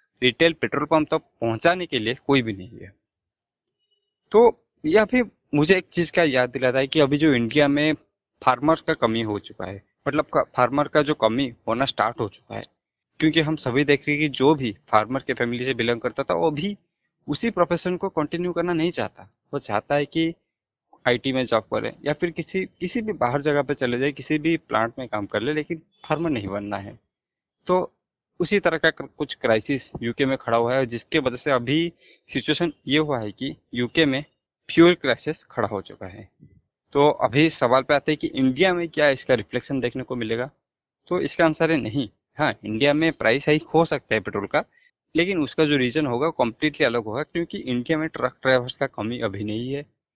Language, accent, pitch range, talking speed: Hindi, native, 120-160 Hz, 210 wpm